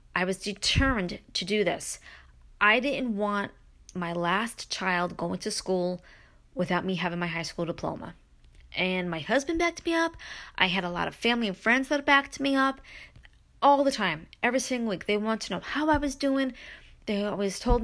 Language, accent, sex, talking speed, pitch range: English, American, female, 190 wpm, 185-245 Hz